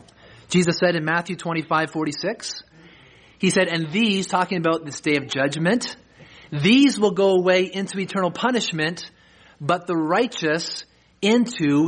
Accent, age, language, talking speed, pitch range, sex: American, 30-49, English, 145 wpm, 160-205 Hz, male